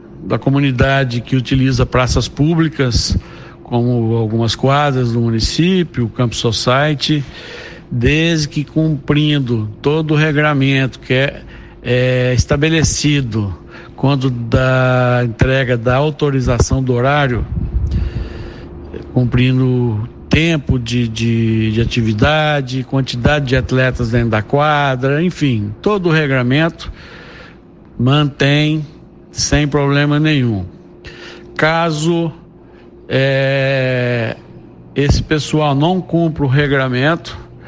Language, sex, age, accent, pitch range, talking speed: Portuguese, male, 60-79, Brazilian, 120-145 Hz, 95 wpm